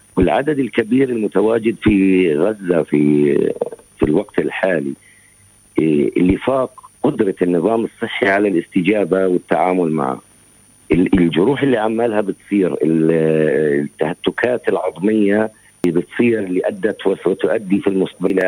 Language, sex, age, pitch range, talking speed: Arabic, male, 50-69, 90-115 Hz, 100 wpm